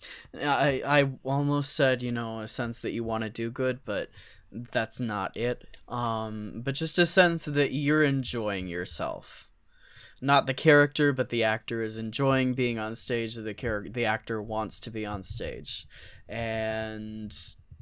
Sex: male